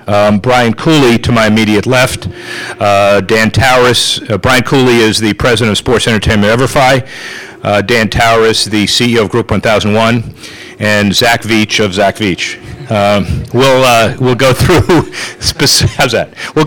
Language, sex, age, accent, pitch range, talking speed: English, male, 50-69, American, 105-125 Hz, 155 wpm